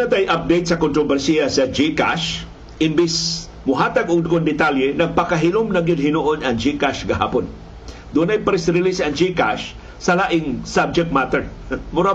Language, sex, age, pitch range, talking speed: Filipino, male, 50-69, 140-180 Hz, 130 wpm